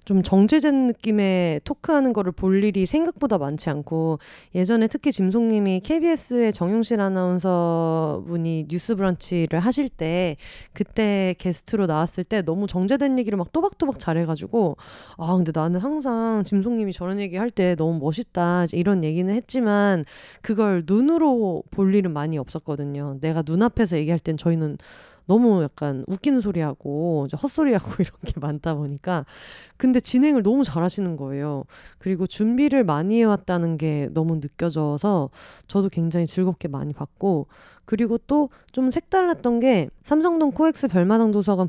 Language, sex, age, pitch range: Korean, female, 30-49, 165-235 Hz